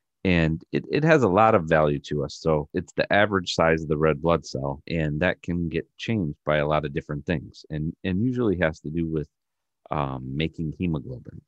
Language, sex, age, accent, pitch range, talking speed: English, male, 40-59, American, 70-80 Hz, 215 wpm